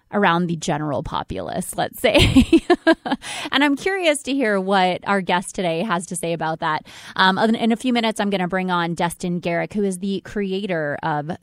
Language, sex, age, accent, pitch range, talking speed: English, female, 20-39, American, 170-230 Hz, 200 wpm